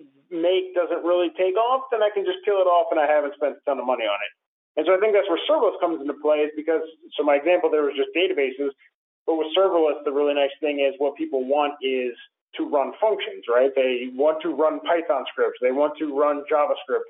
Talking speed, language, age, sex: 240 wpm, English, 40-59, male